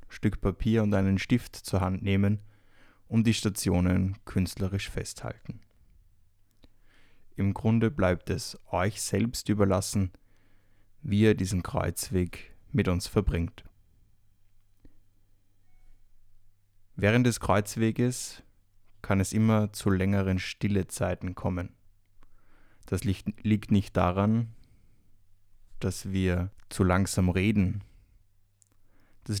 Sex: male